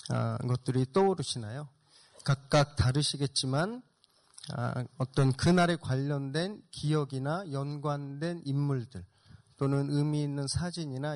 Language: Korean